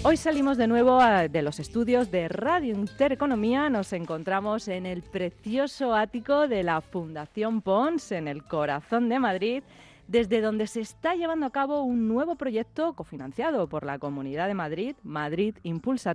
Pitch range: 175-250 Hz